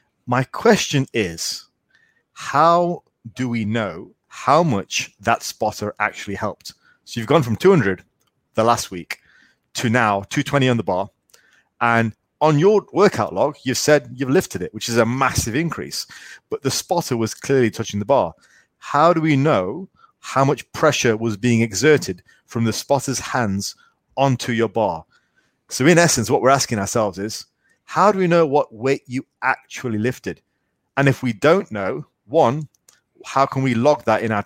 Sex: male